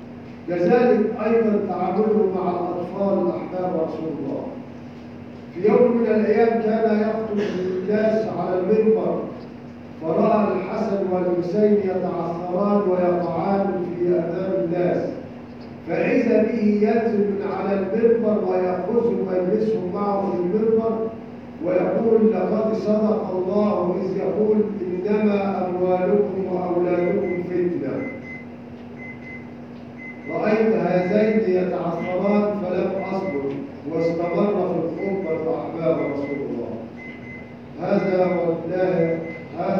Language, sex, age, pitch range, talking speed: English, male, 50-69, 170-200 Hz, 85 wpm